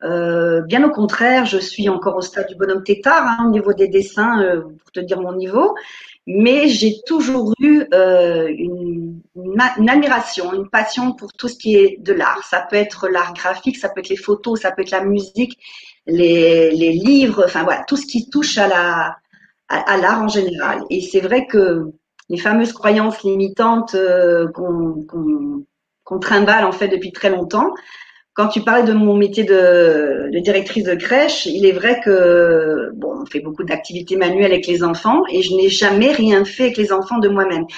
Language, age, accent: French, 40-59, French